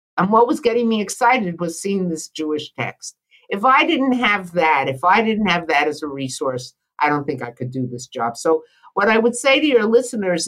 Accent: American